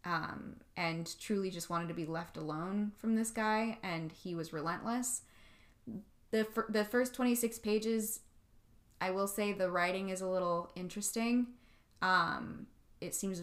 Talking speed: 150 wpm